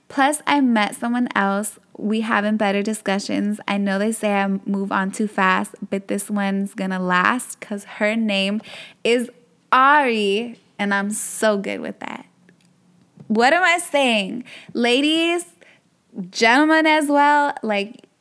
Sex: female